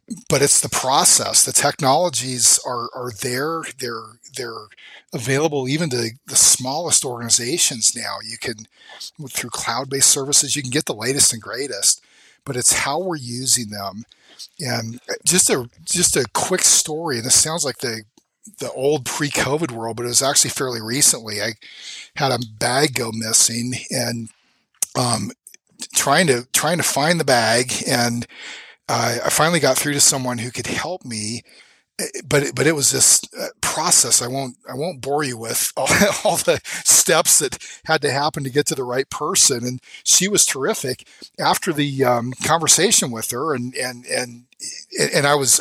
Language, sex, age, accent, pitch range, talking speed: English, male, 40-59, American, 120-145 Hz, 170 wpm